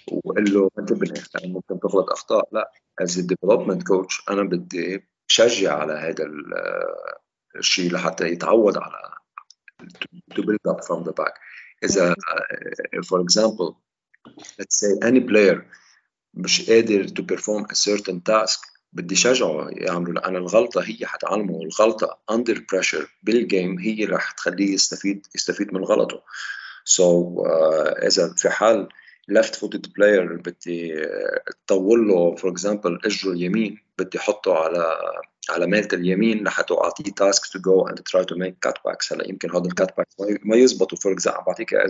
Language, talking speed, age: Arabic, 135 wpm, 50-69